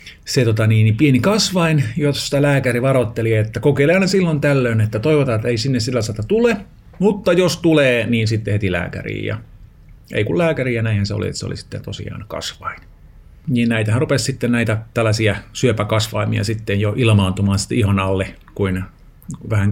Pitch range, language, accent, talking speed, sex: 105-140 Hz, Finnish, native, 175 wpm, male